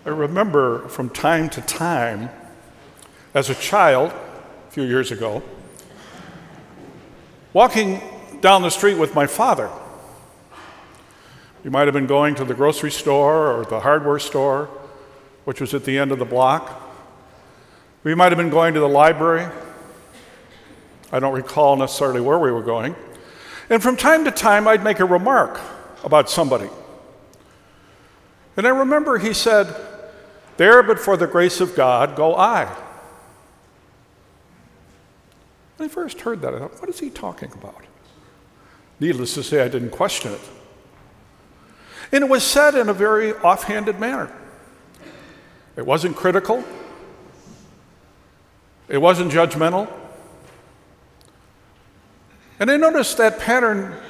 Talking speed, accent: 135 wpm, American